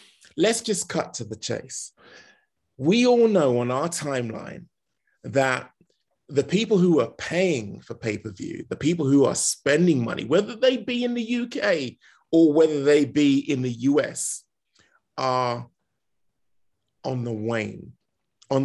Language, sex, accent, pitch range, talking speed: English, male, British, 115-155 Hz, 140 wpm